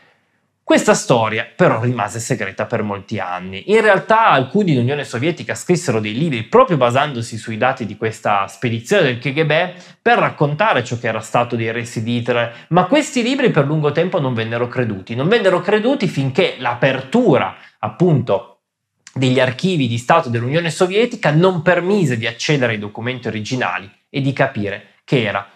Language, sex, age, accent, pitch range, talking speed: Italian, male, 20-39, native, 115-175 Hz, 160 wpm